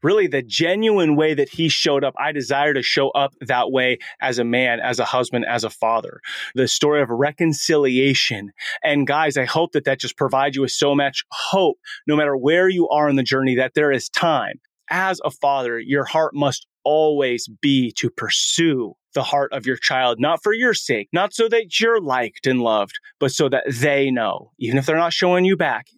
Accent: American